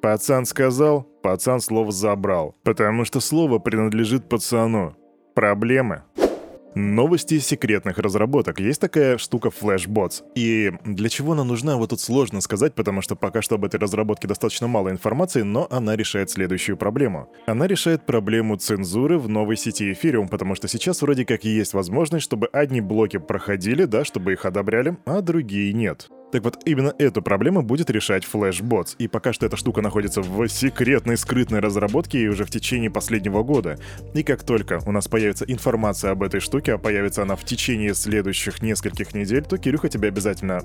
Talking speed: 165 wpm